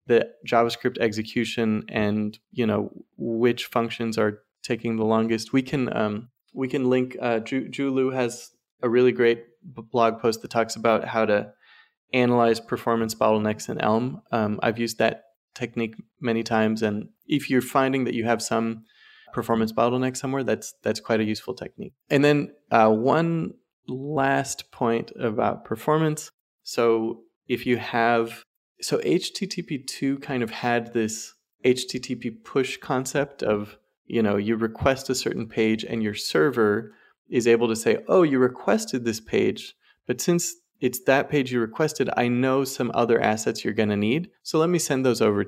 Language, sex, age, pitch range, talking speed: English, male, 20-39, 115-135 Hz, 165 wpm